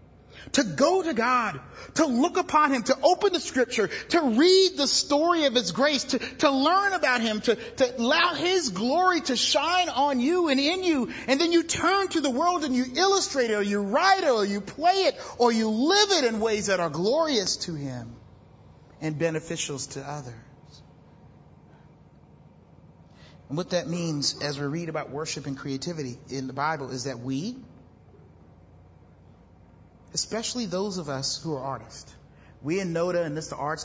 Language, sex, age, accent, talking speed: English, male, 30-49, American, 180 wpm